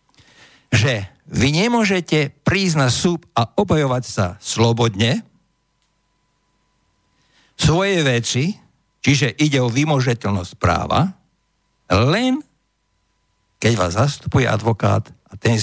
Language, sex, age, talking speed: Slovak, male, 60-79, 90 wpm